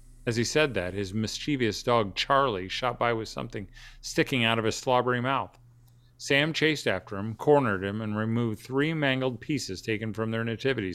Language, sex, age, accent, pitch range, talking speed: English, male, 50-69, American, 110-140 Hz, 180 wpm